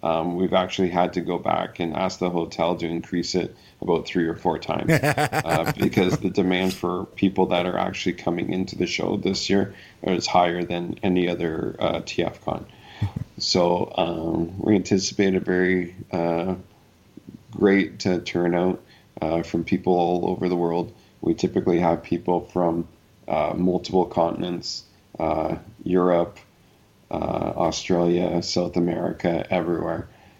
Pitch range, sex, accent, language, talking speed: 85-95 Hz, male, American, English, 140 wpm